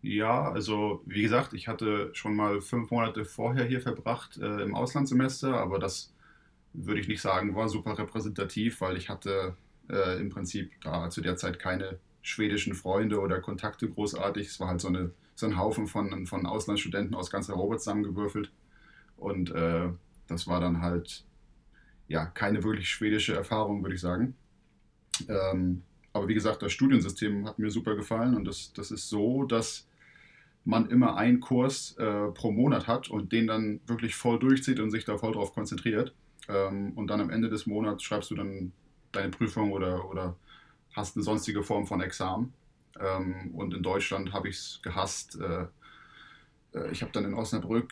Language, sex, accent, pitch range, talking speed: German, male, German, 95-110 Hz, 175 wpm